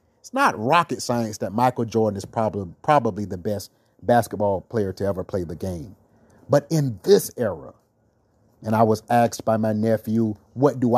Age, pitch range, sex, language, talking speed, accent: 30-49, 110-150 Hz, male, English, 175 wpm, American